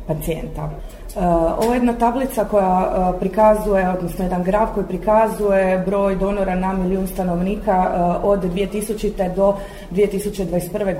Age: 30-49